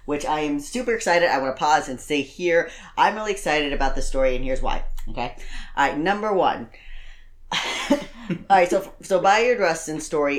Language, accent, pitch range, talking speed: English, American, 130-160 Hz, 195 wpm